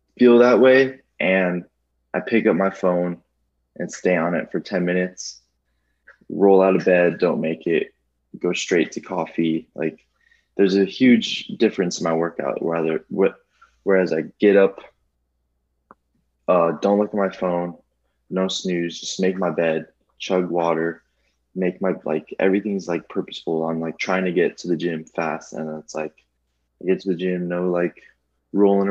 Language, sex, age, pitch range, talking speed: English, male, 20-39, 75-95 Hz, 170 wpm